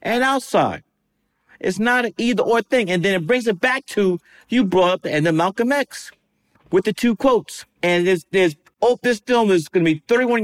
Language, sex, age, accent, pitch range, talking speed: English, male, 50-69, American, 165-225 Hz, 200 wpm